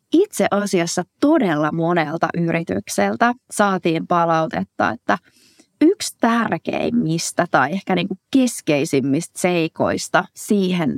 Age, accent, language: 30-49, native, Finnish